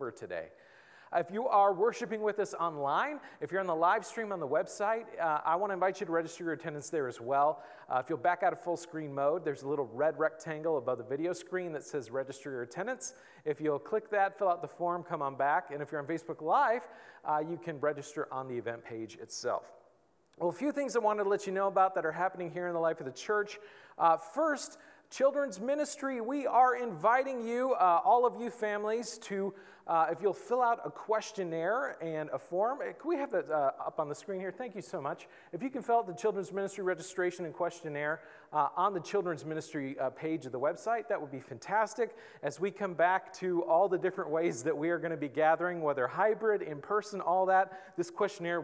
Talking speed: 230 wpm